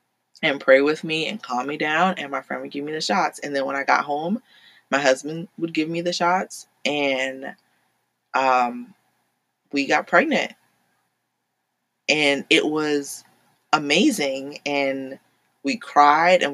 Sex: female